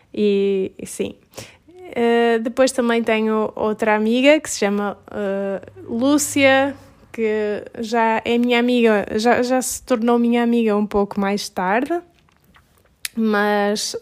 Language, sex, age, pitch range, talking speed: Portuguese, female, 20-39, 205-235 Hz, 120 wpm